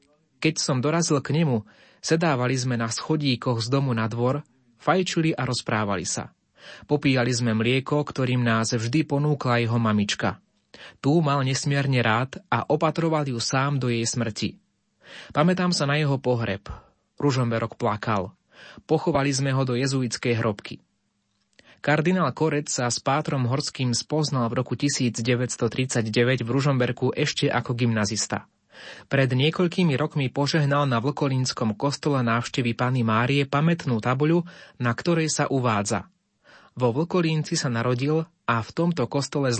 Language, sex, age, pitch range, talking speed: Slovak, male, 20-39, 115-145 Hz, 135 wpm